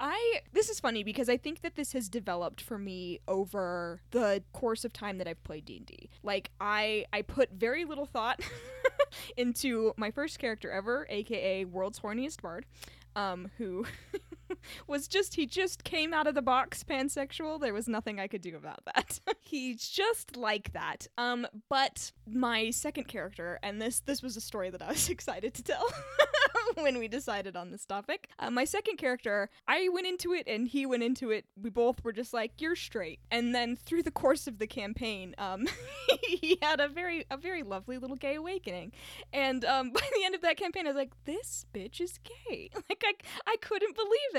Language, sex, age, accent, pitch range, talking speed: English, female, 10-29, American, 220-355 Hz, 195 wpm